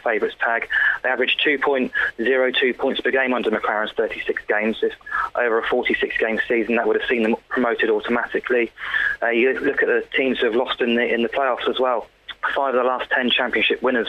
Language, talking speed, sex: English, 200 wpm, male